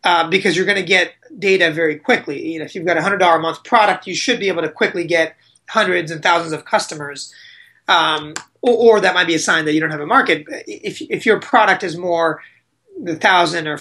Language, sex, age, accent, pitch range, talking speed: English, male, 30-49, American, 165-225 Hz, 235 wpm